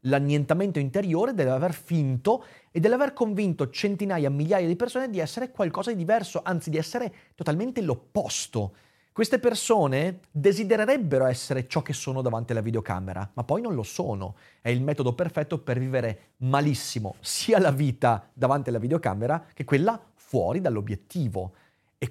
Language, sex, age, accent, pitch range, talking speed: Italian, male, 30-49, native, 130-195 Hz, 145 wpm